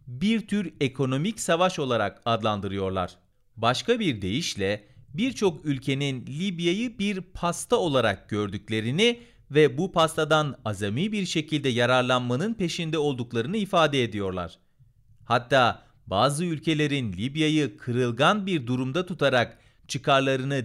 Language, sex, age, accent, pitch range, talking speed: Turkish, male, 40-59, native, 120-170 Hz, 105 wpm